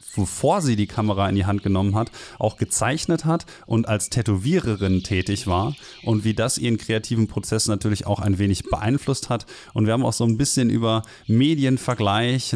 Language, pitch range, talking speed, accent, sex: German, 105-125 Hz, 180 wpm, German, male